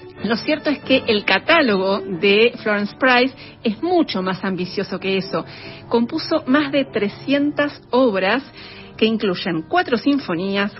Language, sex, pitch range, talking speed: Spanish, female, 190-245 Hz, 135 wpm